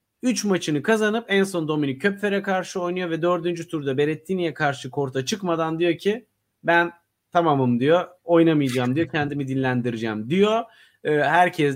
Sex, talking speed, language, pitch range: male, 140 wpm, Turkish, 135-170 Hz